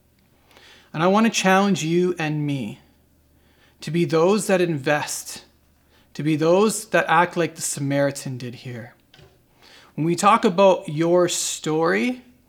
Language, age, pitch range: English, 40-59, 145-190 Hz